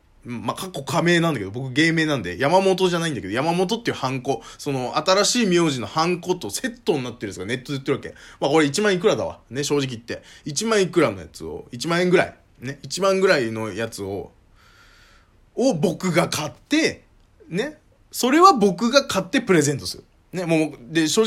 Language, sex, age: Japanese, male, 20-39